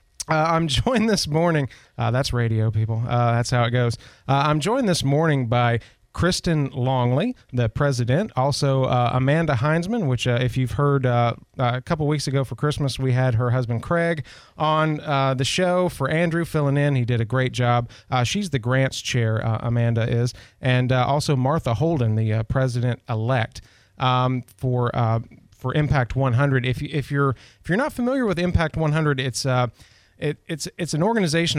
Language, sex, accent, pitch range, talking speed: English, male, American, 120-145 Hz, 190 wpm